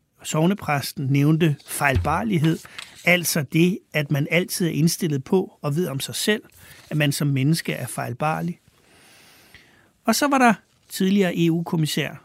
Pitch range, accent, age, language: 145-180 Hz, native, 60-79, Danish